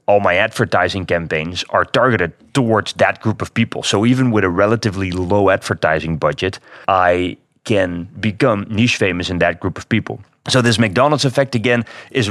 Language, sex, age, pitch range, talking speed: English, male, 30-49, 90-120 Hz, 170 wpm